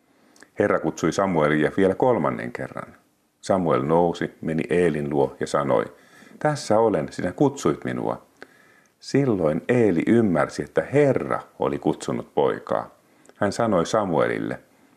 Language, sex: Finnish, male